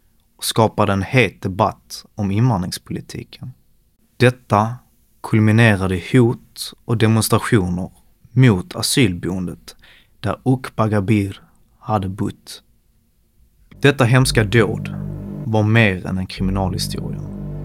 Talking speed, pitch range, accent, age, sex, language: 90 wpm, 100-125 Hz, native, 30-49, male, Swedish